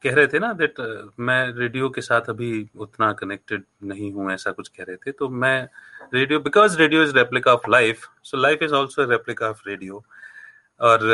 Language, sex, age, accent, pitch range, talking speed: Hindi, male, 30-49, native, 110-150 Hz, 155 wpm